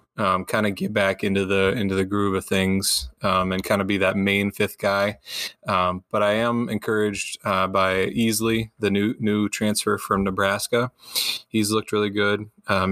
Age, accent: 20-39, American